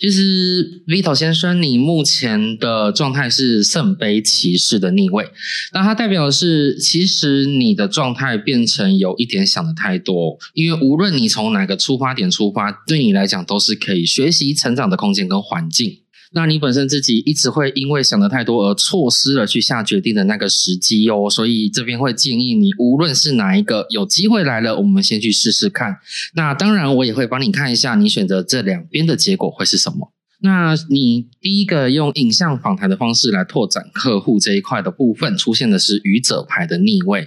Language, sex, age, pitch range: Chinese, male, 20-39, 125-195 Hz